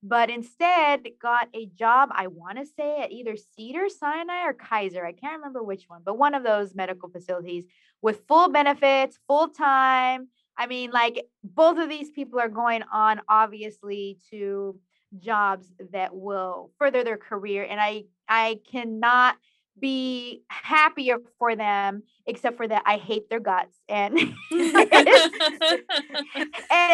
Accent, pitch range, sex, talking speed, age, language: American, 205-280 Hz, female, 145 wpm, 20-39, English